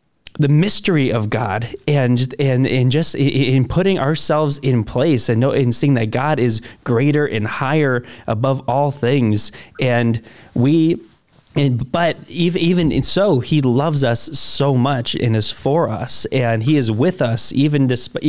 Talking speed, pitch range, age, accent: 165 wpm, 120-150 Hz, 20-39, American